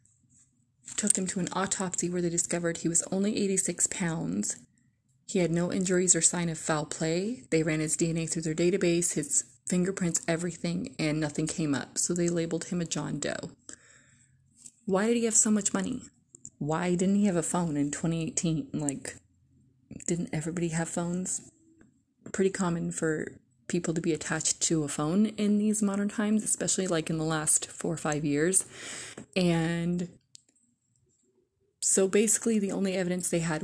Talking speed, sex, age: 165 wpm, female, 20-39